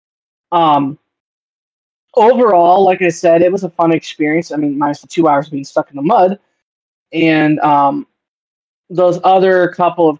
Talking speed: 170 wpm